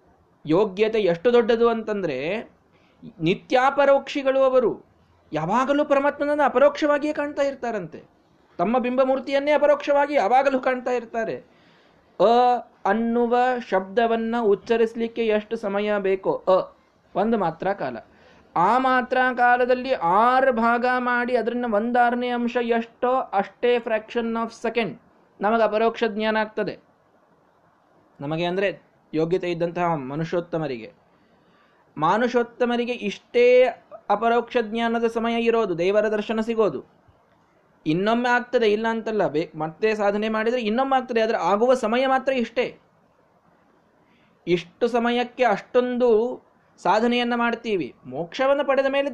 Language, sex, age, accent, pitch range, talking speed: Kannada, male, 20-39, native, 200-250 Hz, 100 wpm